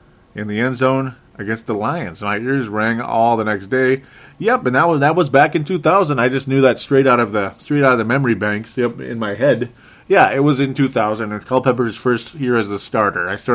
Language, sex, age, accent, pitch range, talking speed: English, male, 30-49, American, 110-140 Hz, 245 wpm